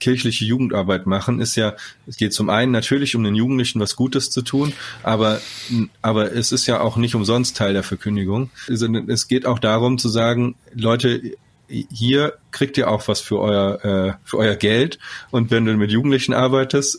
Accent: German